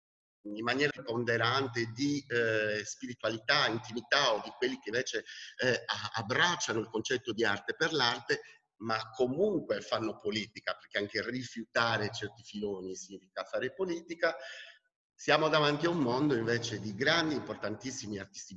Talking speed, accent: 135 wpm, native